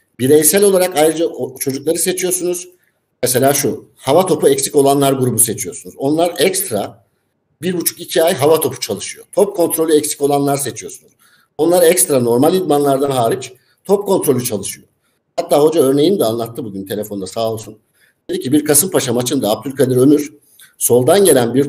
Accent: native